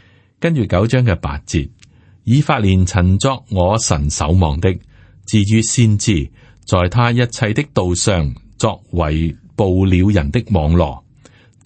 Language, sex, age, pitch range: Chinese, male, 30-49, 85-120 Hz